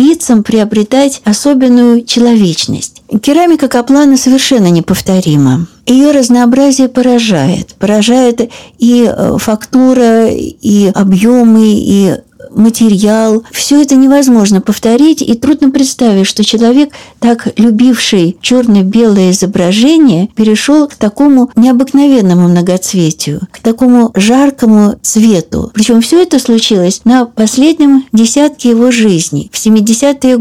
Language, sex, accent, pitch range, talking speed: Russian, female, native, 195-255 Hz, 100 wpm